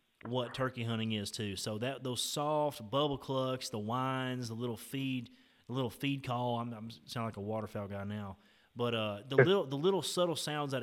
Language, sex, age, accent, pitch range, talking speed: English, male, 30-49, American, 115-150 Hz, 205 wpm